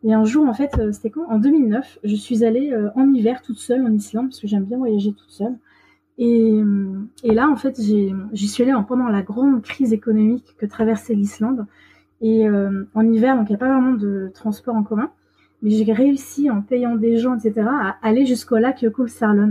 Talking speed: 210 wpm